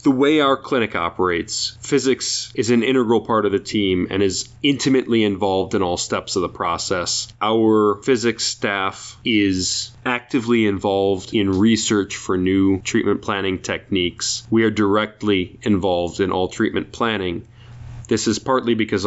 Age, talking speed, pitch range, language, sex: 30-49, 150 wpm, 100-115 Hz, English, male